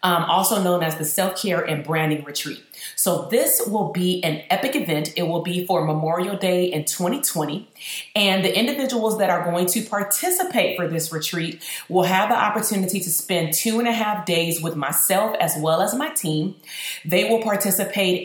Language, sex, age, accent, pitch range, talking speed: English, female, 30-49, American, 160-195 Hz, 185 wpm